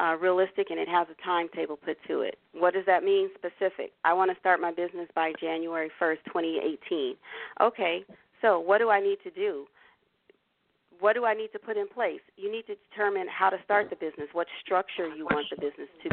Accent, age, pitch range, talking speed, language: American, 40-59, 165-220 Hz, 210 wpm, English